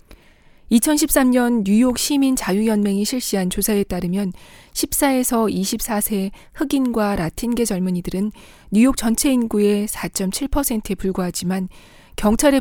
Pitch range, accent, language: 190-245 Hz, native, Korean